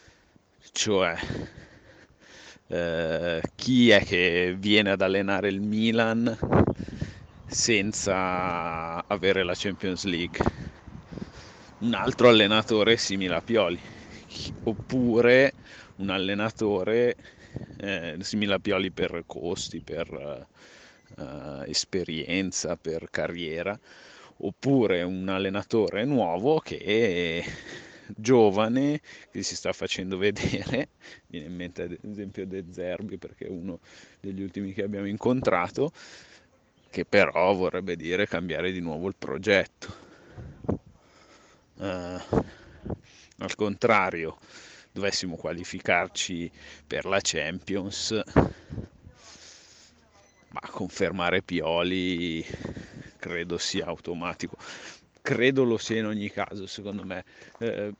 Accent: native